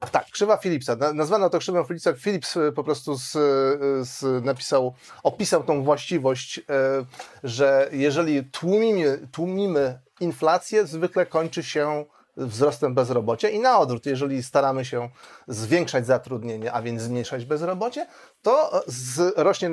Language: Polish